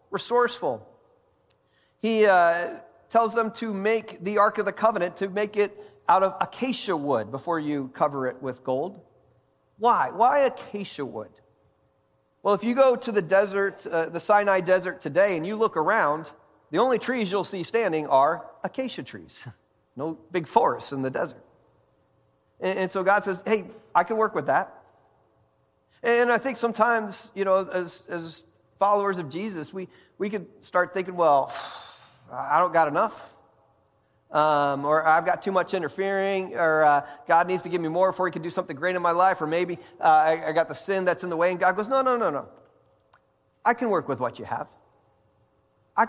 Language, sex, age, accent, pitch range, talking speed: English, male, 40-59, American, 155-215 Hz, 185 wpm